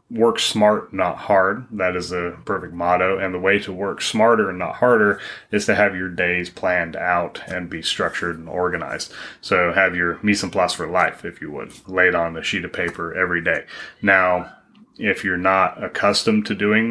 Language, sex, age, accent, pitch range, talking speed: English, male, 30-49, American, 90-100 Hz, 200 wpm